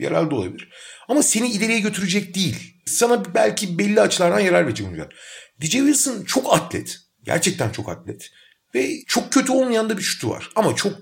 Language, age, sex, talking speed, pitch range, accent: Turkish, 40-59, male, 165 wpm, 140-220 Hz, native